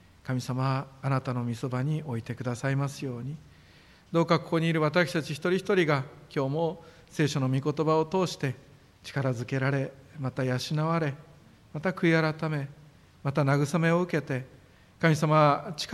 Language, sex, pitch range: Japanese, male, 135-160 Hz